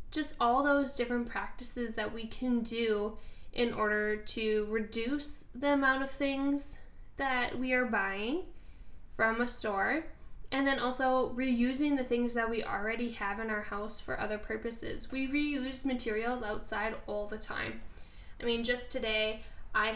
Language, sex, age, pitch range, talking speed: English, female, 10-29, 215-255 Hz, 155 wpm